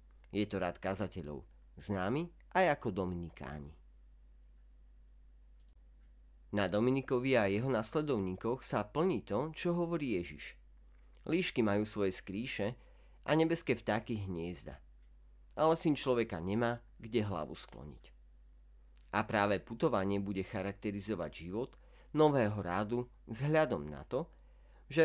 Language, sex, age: Slovak, male, 40-59